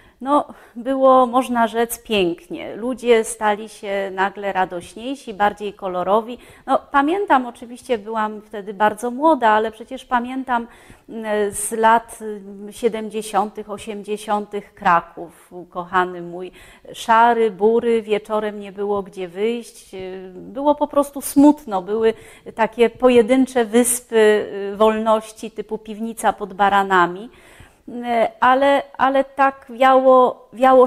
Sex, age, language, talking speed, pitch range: female, 30-49, Polish, 105 wpm, 205-255 Hz